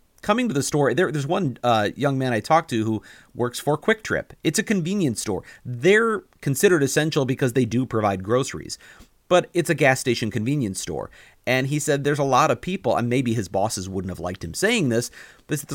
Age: 40-59